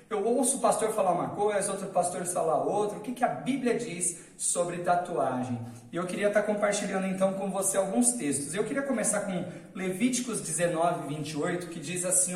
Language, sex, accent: Portuguese, male, Brazilian